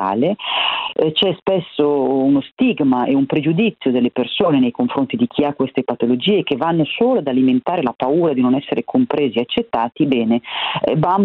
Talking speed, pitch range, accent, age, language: 165 wpm, 120-165 Hz, native, 40-59, Italian